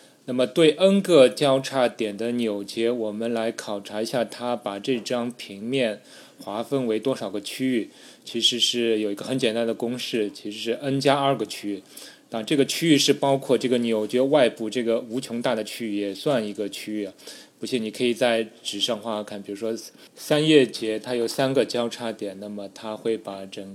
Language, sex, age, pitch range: Chinese, male, 20-39, 105-125 Hz